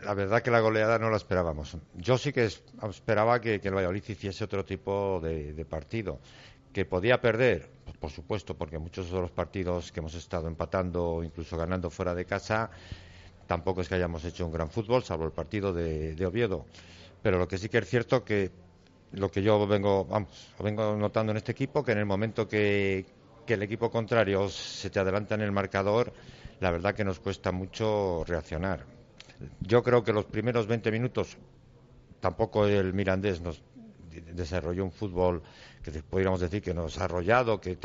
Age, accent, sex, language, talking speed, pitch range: 60-79, Spanish, male, Spanish, 185 wpm, 90-110 Hz